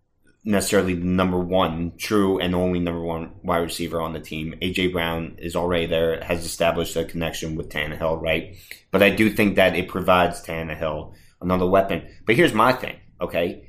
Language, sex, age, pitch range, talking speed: English, male, 30-49, 85-100 Hz, 180 wpm